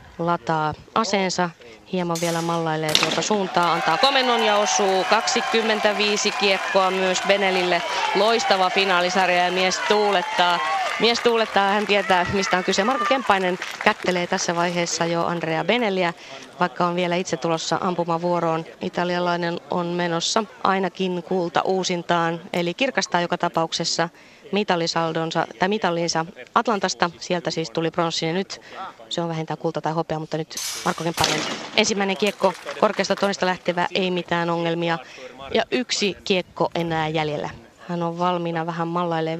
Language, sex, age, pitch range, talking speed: Finnish, female, 20-39, 170-205 Hz, 130 wpm